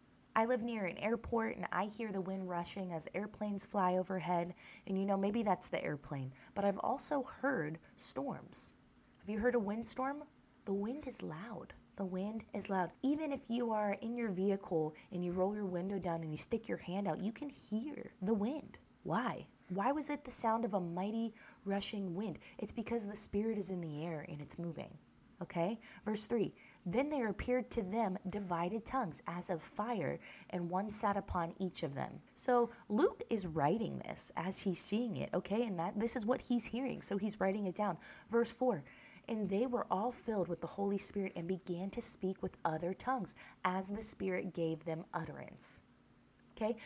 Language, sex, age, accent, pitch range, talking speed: English, female, 20-39, American, 185-230 Hz, 195 wpm